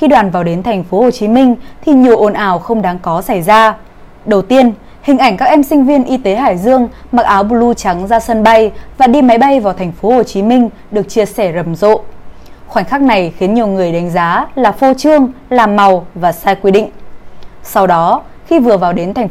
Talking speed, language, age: 235 wpm, Vietnamese, 20-39